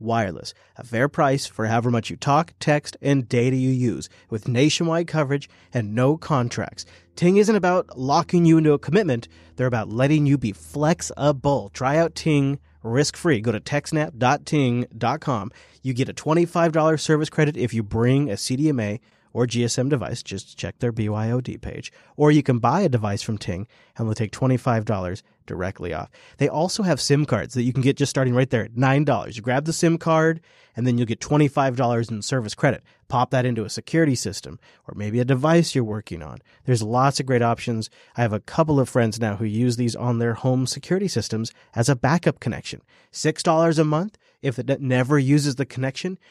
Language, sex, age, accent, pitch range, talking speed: English, male, 30-49, American, 115-150 Hz, 190 wpm